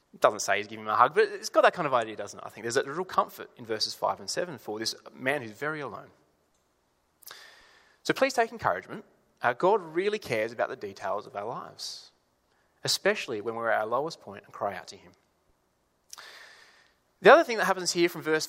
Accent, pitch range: Australian, 120-200 Hz